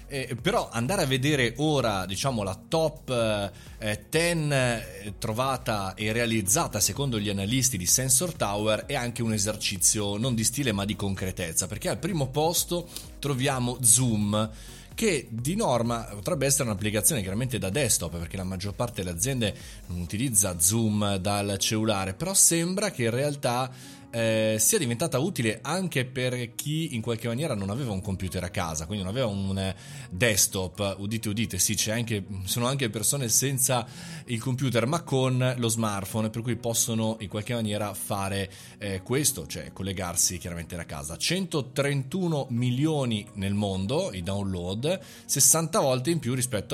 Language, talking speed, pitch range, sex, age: Italian, 155 wpm, 100-135 Hz, male, 30-49